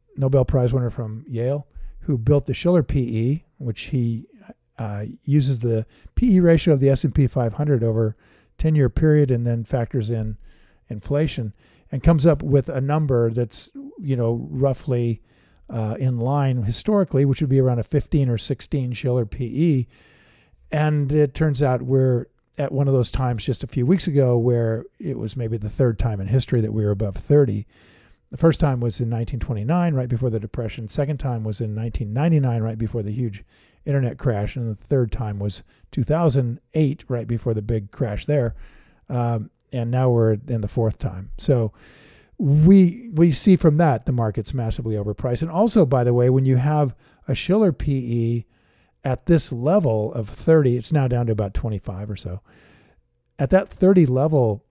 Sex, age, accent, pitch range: male, 50-69, American, 115-145 Hz